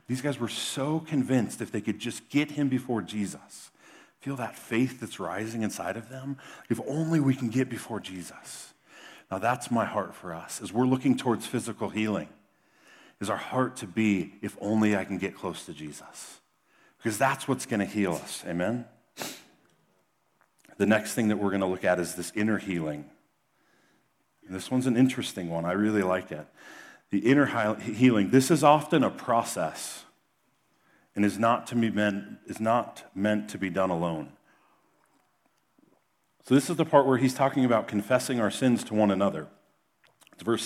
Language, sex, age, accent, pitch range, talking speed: English, male, 40-59, American, 100-130 Hz, 180 wpm